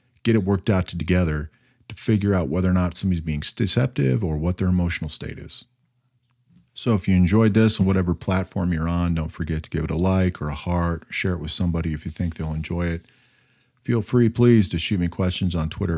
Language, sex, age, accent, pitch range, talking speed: English, male, 40-59, American, 80-100 Hz, 220 wpm